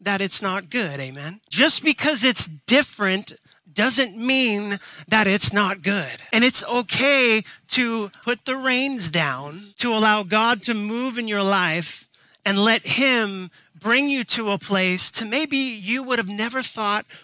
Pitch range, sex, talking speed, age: 185-235 Hz, male, 160 wpm, 30-49